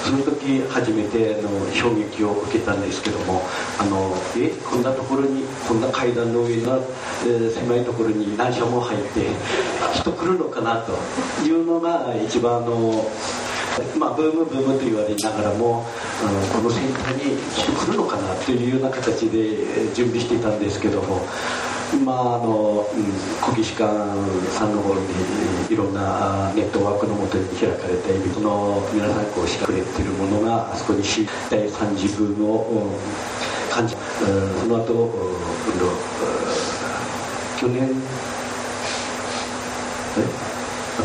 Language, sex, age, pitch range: Japanese, male, 40-59, 105-125 Hz